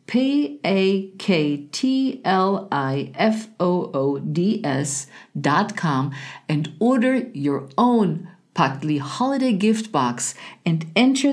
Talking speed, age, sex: 110 wpm, 50-69, female